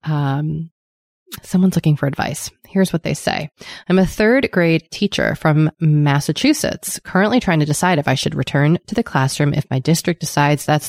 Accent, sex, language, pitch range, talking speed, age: American, female, English, 145-185 Hz, 175 wpm, 20-39